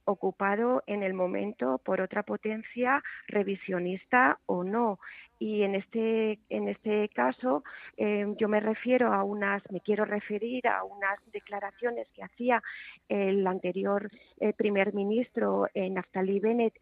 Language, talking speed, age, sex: Spanish, 130 wpm, 40-59, female